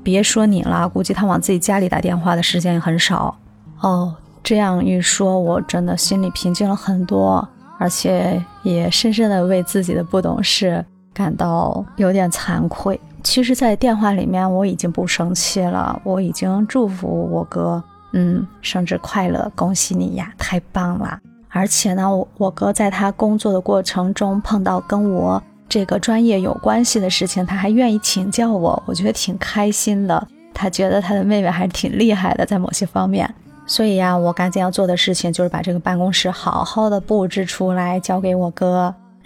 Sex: female